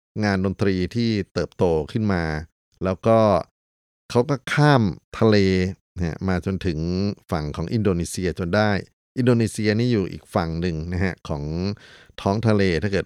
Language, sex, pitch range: Thai, male, 85-105 Hz